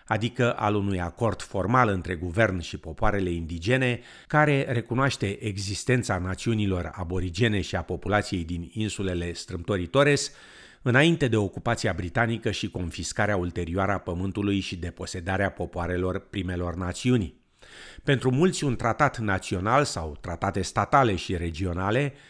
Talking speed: 120 wpm